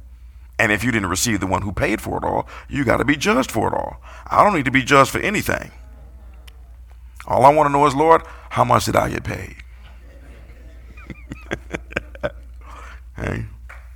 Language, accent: English, American